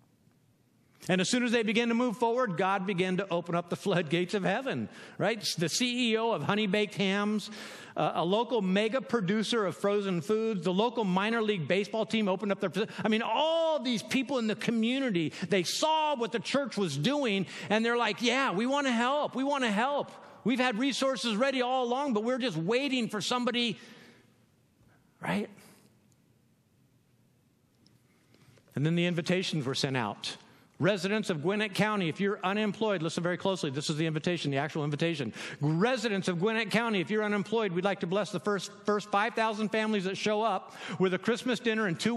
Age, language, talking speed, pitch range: 50-69, English, 185 wpm, 185-245 Hz